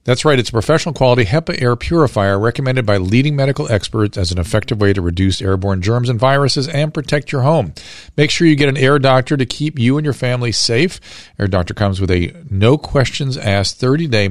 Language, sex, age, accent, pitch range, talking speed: English, male, 50-69, American, 105-140 Hz, 220 wpm